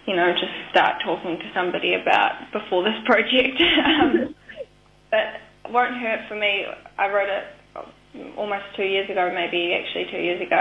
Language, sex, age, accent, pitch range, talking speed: English, female, 10-29, Australian, 190-220 Hz, 165 wpm